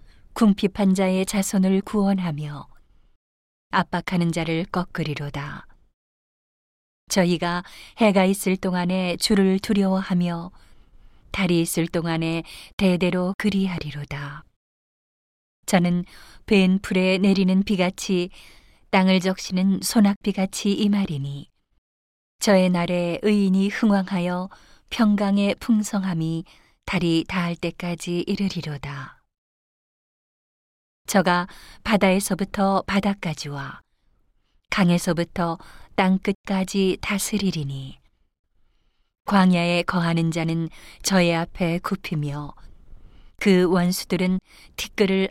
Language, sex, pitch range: Korean, female, 165-195 Hz